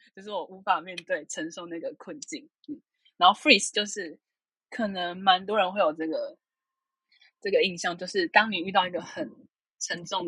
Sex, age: female, 20-39